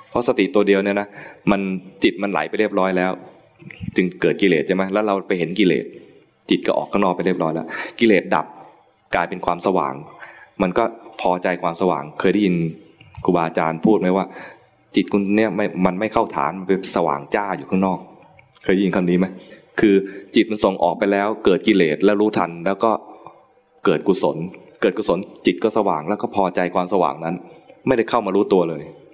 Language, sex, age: English, male, 20-39